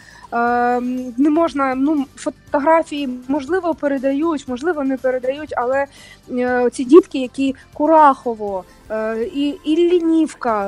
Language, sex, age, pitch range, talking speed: English, female, 20-39, 255-315 Hz, 95 wpm